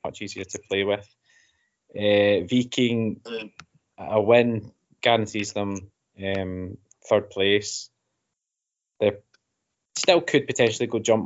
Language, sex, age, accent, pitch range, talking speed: English, male, 20-39, British, 100-120 Hz, 105 wpm